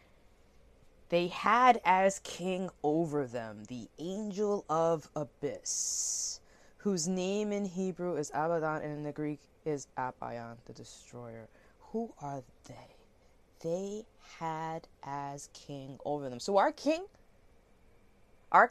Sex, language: female, English